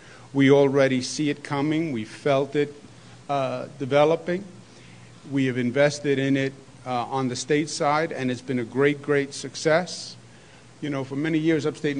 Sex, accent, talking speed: male, American, 165 wpm